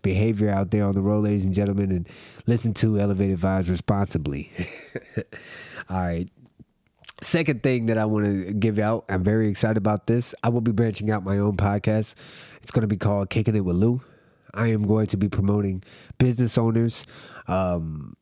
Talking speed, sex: 185 wpm, male